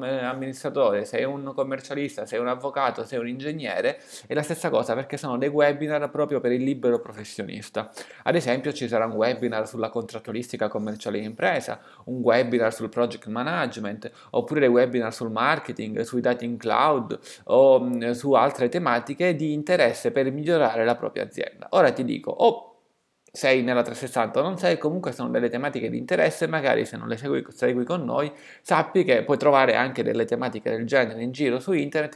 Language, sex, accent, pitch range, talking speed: Italian, male, native, 120-145 Hz, 175 wpm